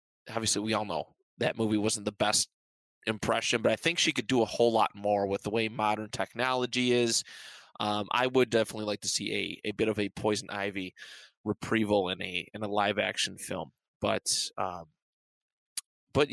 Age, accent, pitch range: 20-39, American, 105-130 Hz